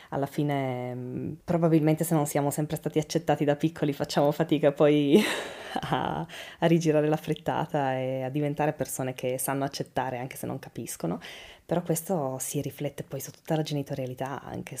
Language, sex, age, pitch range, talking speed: Italian, female, 20-39, 140-180 Hz, 160 wpm